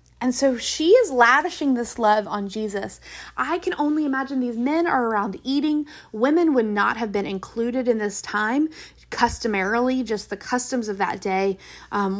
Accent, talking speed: American, 170 wpm